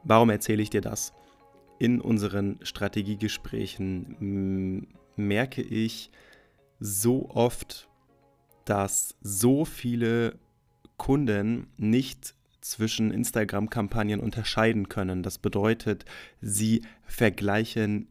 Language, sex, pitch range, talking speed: German, male, 105-120 Hz, 85 wpm